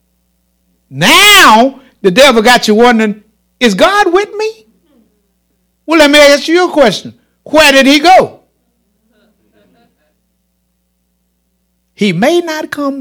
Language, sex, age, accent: English, male, 60-79, American